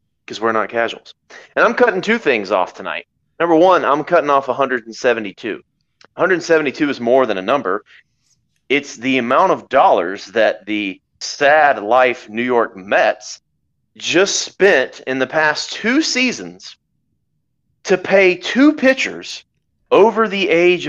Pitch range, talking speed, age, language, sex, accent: 115-155 Hz, 140 wpm, 30-49, English, male, American